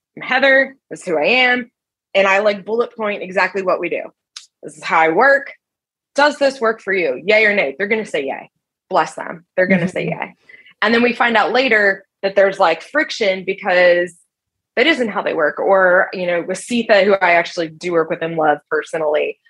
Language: English